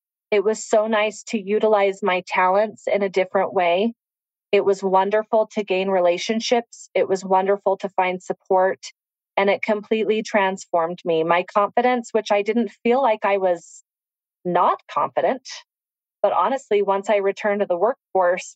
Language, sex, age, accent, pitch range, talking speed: English, female, 30-49, American, 185-215 Hz, 155 wpm